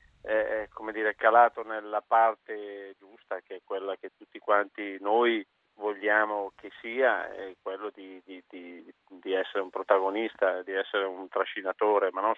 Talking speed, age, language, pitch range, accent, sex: 160 wpm, 40-59, Italian, 100-110 Hz, native, male